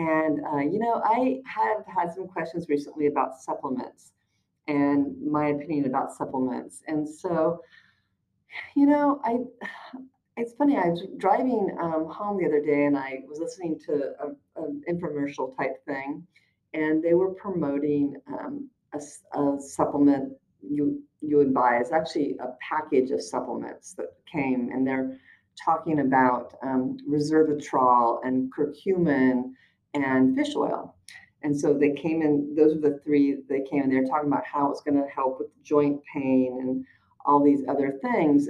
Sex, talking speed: female, 155 wpm